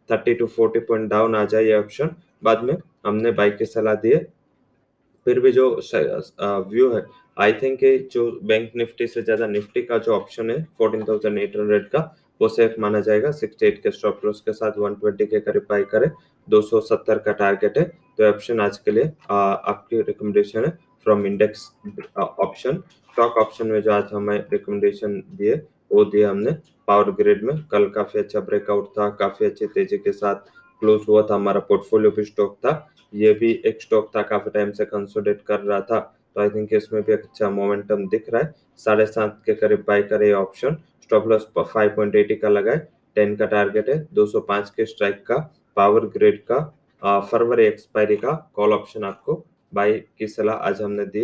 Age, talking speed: 20-39, 155 wpm